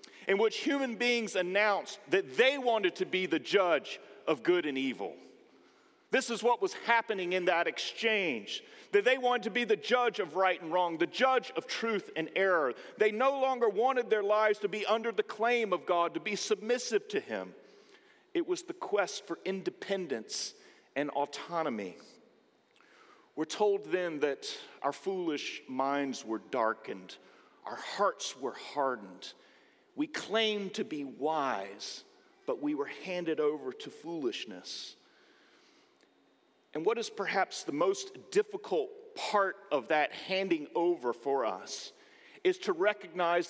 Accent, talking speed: American, 150 wpm